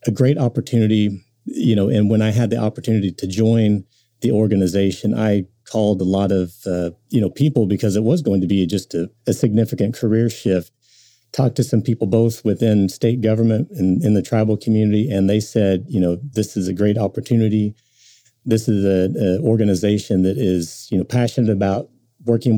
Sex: male